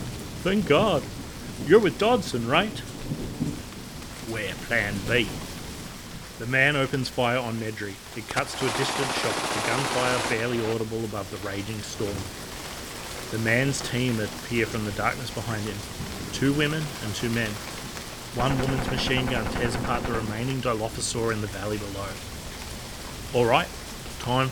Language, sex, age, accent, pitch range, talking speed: English, male, 30-49, Australian, 100-125 Hz, 140 wpm